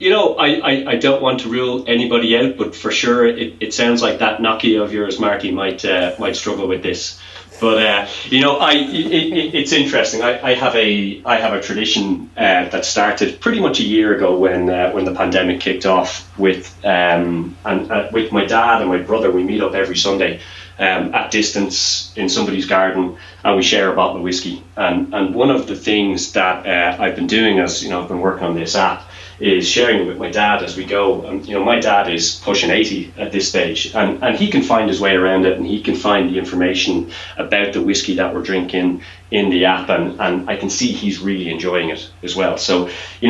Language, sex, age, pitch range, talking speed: English, male, 30-49, 90-105 Hz, 230 wpm